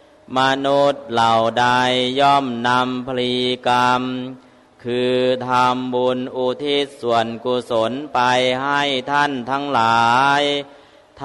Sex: male